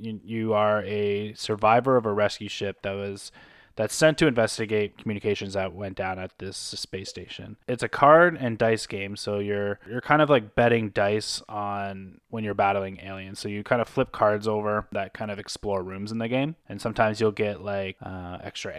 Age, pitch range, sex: 20-39, 95-110 Hz, male